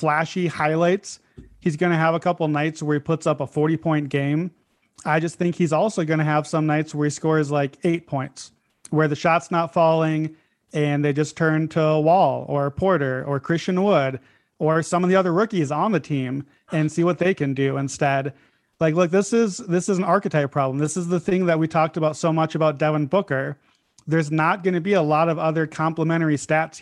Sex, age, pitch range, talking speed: male, 30-49, 150-175 Hz, 220 wpm